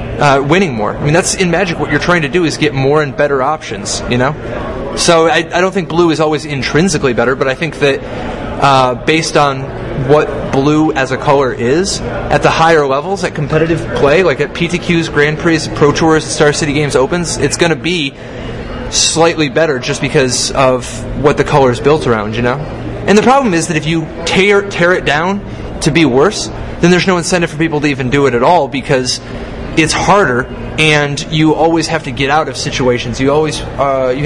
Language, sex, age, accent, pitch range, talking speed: English, male, 20-39, American, 130-165 Hz, 210 wpm